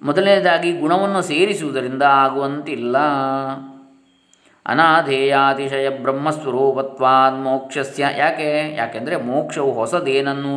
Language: Kannada